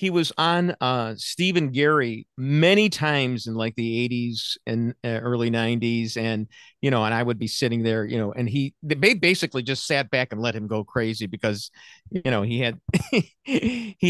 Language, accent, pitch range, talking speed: English, American, 120-165 Hz, 185 wpm